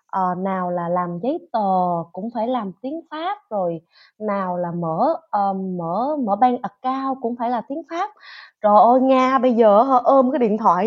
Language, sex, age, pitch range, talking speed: Vietnamese, female, 20-39, 210-300 Hz, 195 wpm